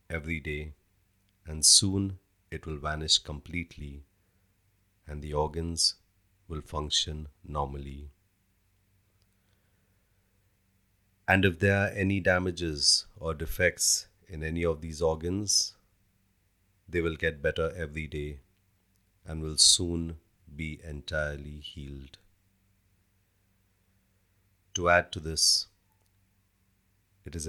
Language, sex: English, male